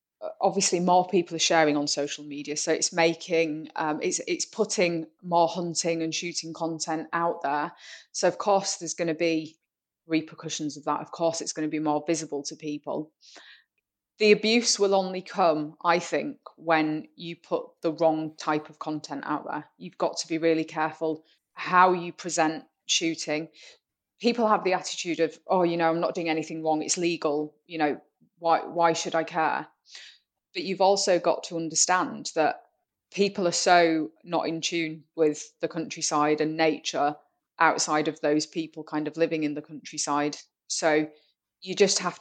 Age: 20-39